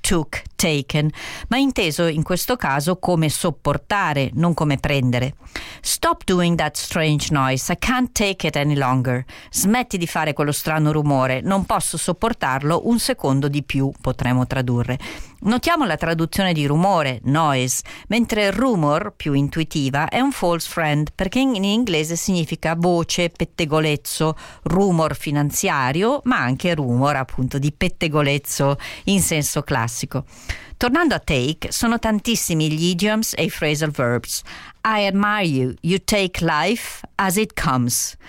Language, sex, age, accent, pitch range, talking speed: Italian, female, 50-69, native, 140-195 Hz, 140 wpm